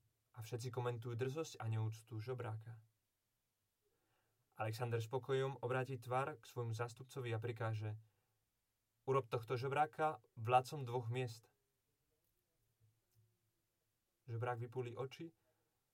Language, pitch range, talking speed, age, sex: Czech, 110-130 Hz, 95 wpm, 20-39, male